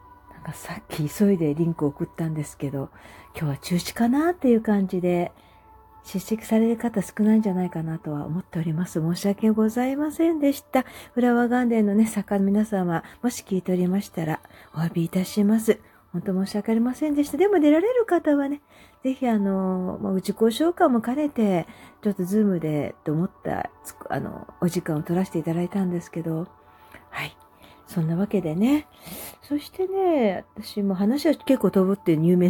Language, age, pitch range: Japanese, 40-59, 170-250 Hz